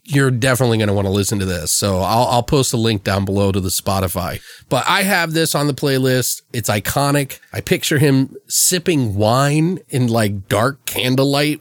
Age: 30-49